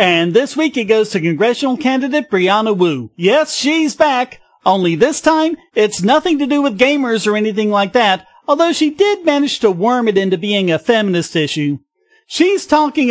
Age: 40-59